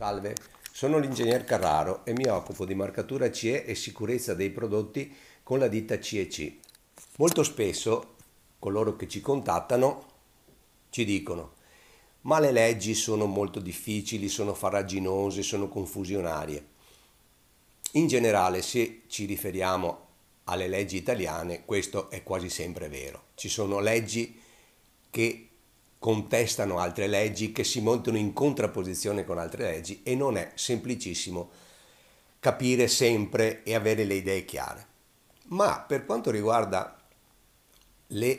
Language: Italian